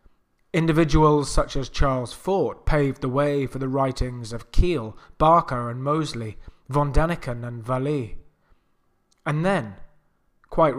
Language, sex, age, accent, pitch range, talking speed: English, male, 20-39, British, 120-150 Hz, 130 wpm